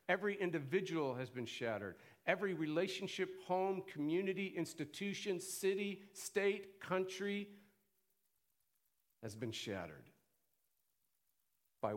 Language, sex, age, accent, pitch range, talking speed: English, male, 50-69, American, 130-185 Hz, 85 wpm